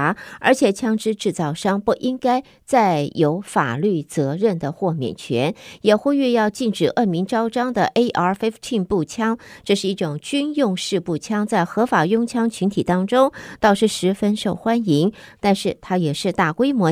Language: Chinese